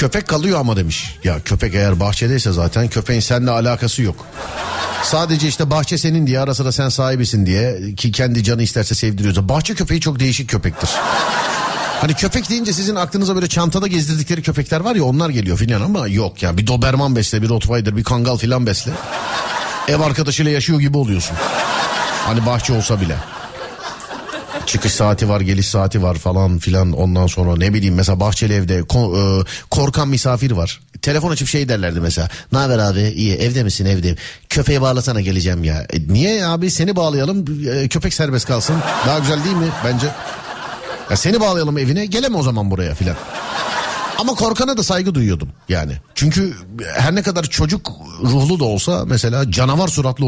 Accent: native